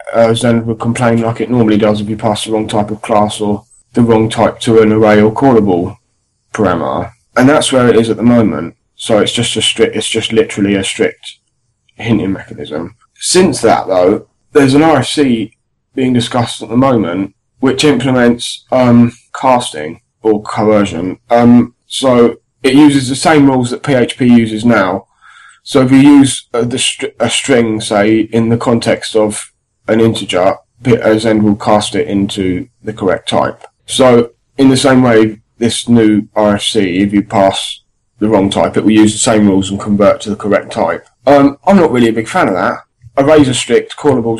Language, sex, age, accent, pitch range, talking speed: English, male, 10-29, British, 110-130 Hz, 185 wpm